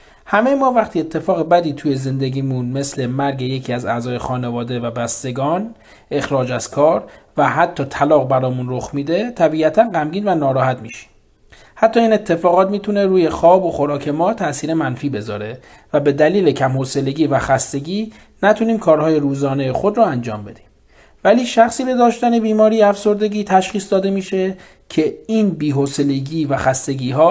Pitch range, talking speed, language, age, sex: 130-185 Hz, 150 wpm, Persian, 40-59, male